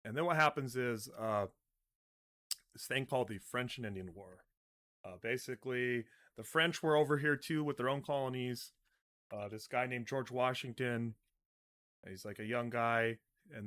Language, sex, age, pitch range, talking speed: English, male, 30-49, 110-130 Hz, 165 wpm